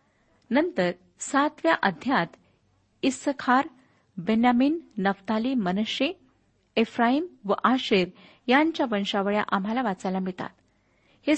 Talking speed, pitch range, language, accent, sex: 85 wpm, 195-255 Hz, Marathi, native, female